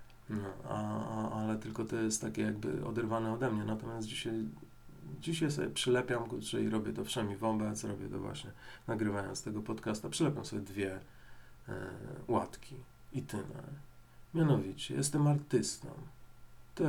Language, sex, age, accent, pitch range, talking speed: Polish, male, 40-59, native, 105-125 Hz, 145 wpm